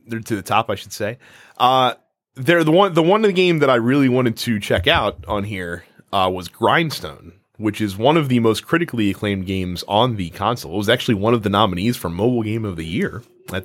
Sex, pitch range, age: male, 100-145 Hz, 30-49